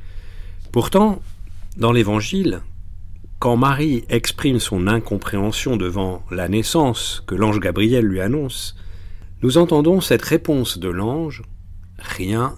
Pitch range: 90-120 Hz